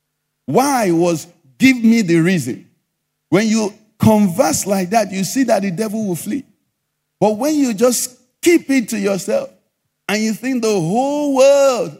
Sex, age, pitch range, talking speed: male, 50-69, 180-240 Hz, 160 wpm